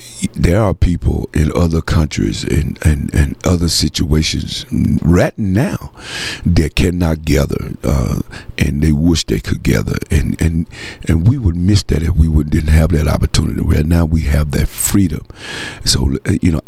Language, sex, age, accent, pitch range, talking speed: English, male, 60-79, American, 75-90 Hz, 170 wpm